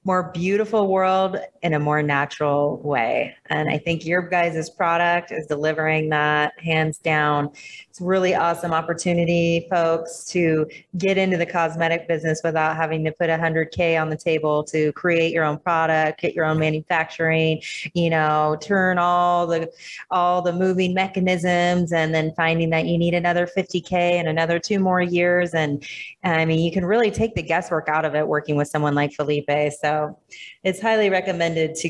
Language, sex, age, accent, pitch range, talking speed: English, female, 30-49, American, 155-180 Hz, 175 wpm